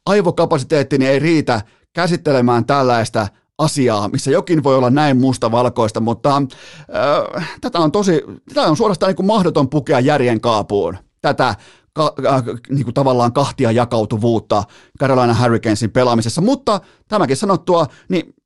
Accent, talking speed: native, 130 wpm